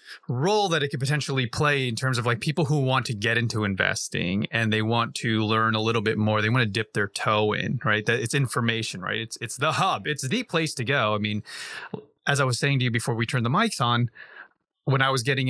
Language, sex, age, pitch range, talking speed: English, male, 30-49, 115-150 Hz, 250 wpm